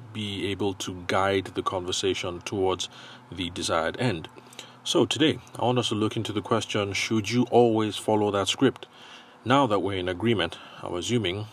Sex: male